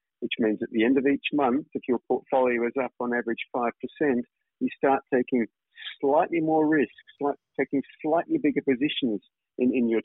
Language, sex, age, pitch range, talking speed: English, male, 50-69, 110-140 Hz, 175 wpm